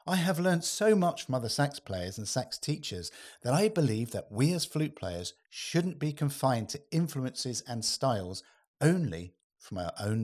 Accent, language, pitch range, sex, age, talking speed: British, English, 105-150 Hz, male, 50-69, 180 wpm